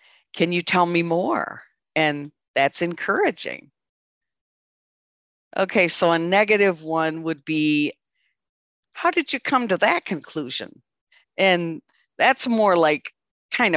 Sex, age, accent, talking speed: female, 50-69, American, 120 wpm